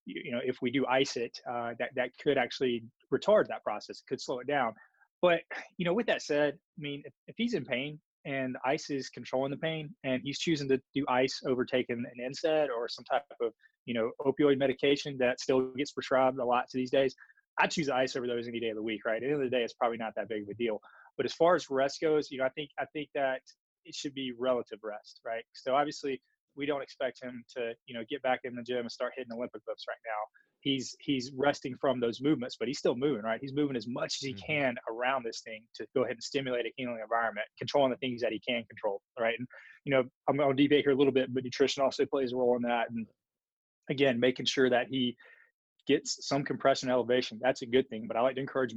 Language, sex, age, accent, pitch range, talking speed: English, male, 20-39, American, 125-145 Hz, 255 wpm